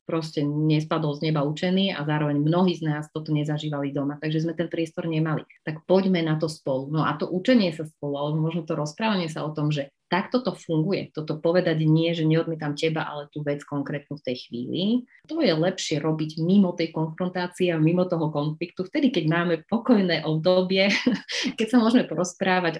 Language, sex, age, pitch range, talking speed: Slovak, female, 30-49, 155-190 Hz, 190 wpm